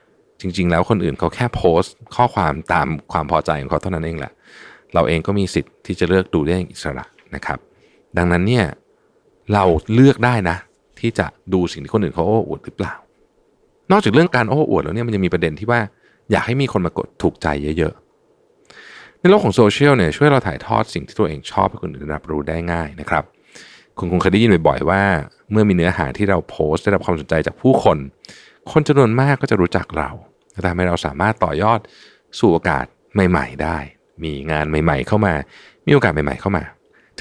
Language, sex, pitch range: Thai, male, 80-115 Hz